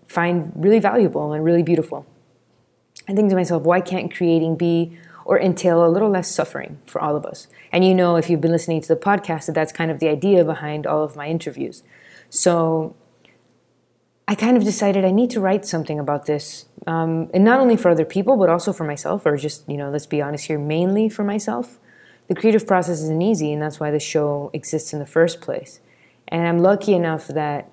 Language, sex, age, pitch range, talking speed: English, female, 20-39, 155-185 Hz, 215 wpm